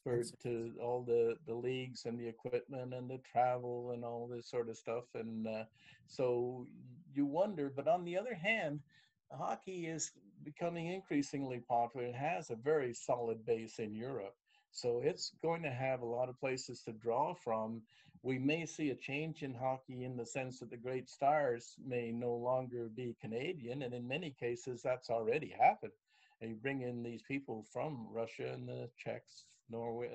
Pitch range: 120-150 Hz